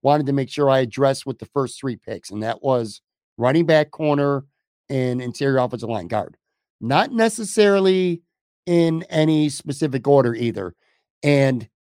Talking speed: 150 wpm